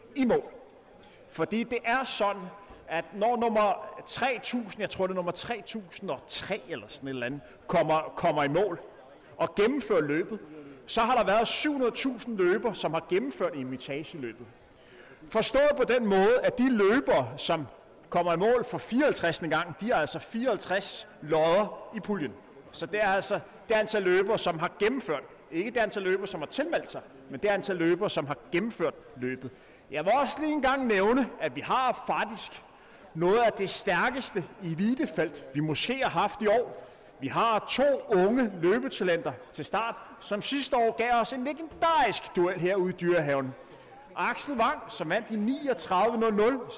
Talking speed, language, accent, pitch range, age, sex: 175 wpm, Danish, native, 170-240 Hz, 30-49, male